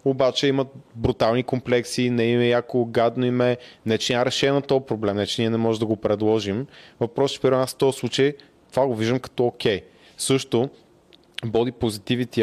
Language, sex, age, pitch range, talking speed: Bulgarian, male, 20-39, 110-125 Hz, 185 wpm